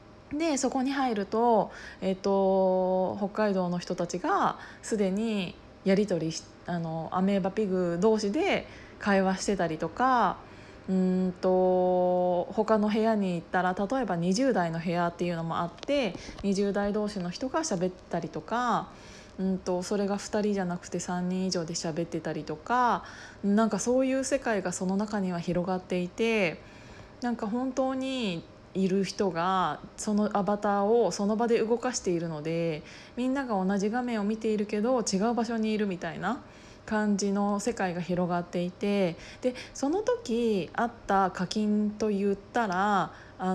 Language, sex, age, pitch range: Japanese, female, 20-39, 180-220 Hz